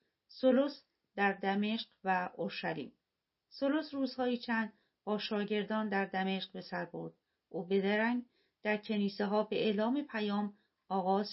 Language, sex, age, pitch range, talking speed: Persian, female, 40-59, 190-225 Hz, 130 wpm